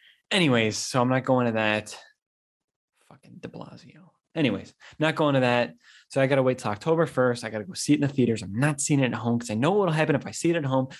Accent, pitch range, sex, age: American, 120-145 Hz, male, 20-39